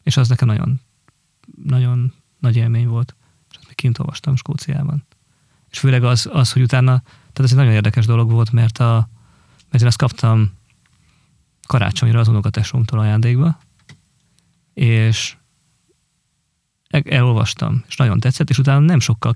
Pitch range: 115-140 Hz